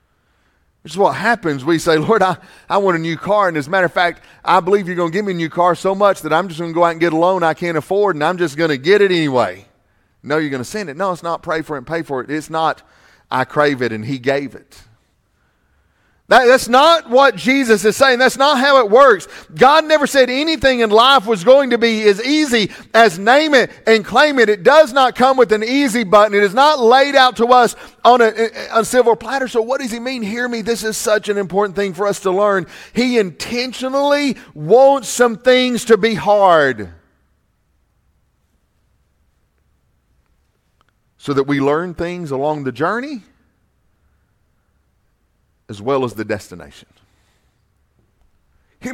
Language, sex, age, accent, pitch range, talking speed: English, male, 40-59, American, 150-235 Hz, 205 wpm